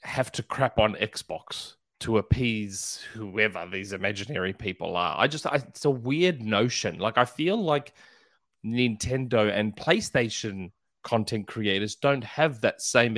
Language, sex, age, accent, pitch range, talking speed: English, male, 30-49, Australian, 110-145 Hz, 145 wpm